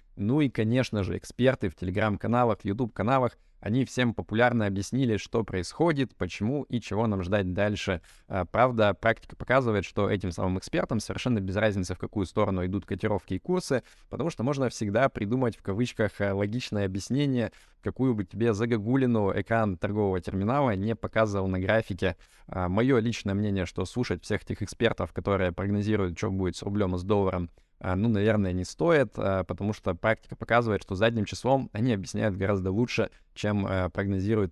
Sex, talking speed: male, 165 wpm